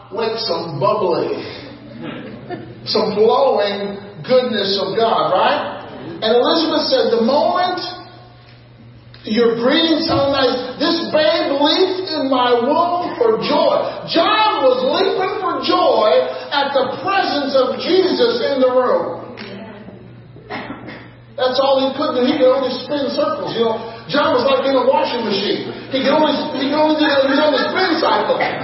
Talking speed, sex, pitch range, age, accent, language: 140 wpm, male, 195-320 Hz, 40-59, American, English